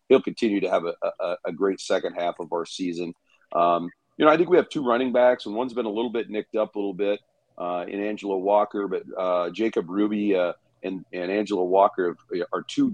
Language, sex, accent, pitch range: English, male, American, 95-110 Hz